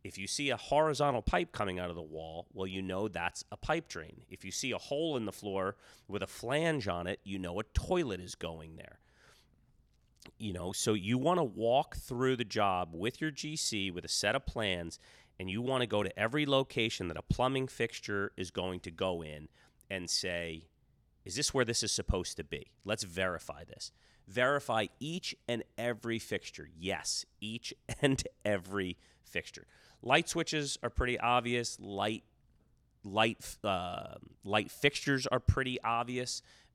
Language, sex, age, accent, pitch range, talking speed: English, male, 30-49, American, 90-125 Hz, 175 wpm